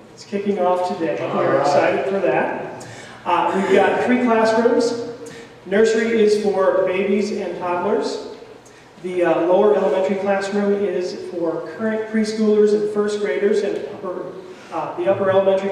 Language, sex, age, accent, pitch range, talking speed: English, male, 40-59, American, 170-200 Hz, 140 wpm